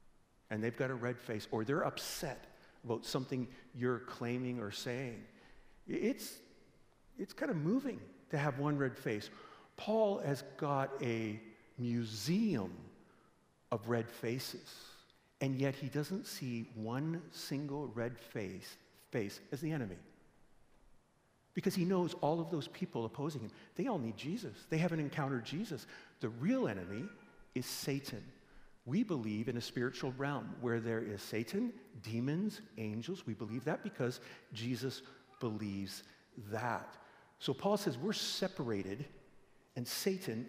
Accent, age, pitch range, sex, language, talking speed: American, 50-69, 115-155 Hz, male, English, 140 wpm